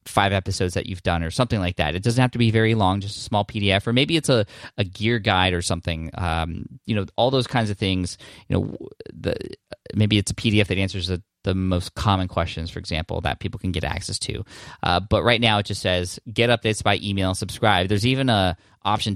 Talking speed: 235 wpm